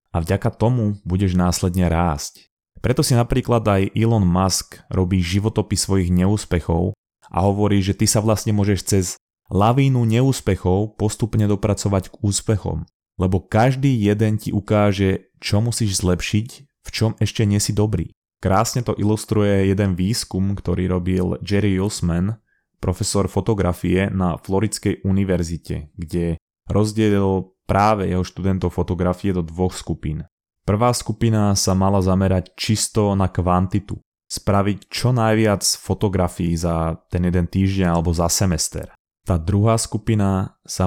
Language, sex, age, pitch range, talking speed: Slovak, male, 20-39, 90-105 Hz, 130 wpm